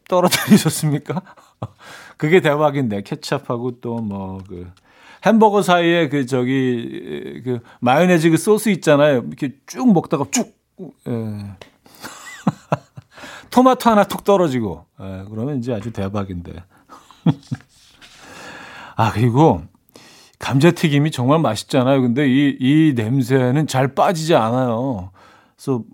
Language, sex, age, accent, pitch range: Korean, male, 40-59, native, 120-155 Hz